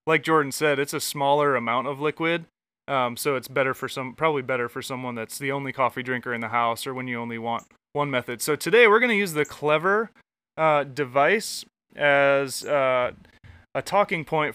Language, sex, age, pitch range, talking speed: English, male, 30-49, 135-160 Hz, 200 wpm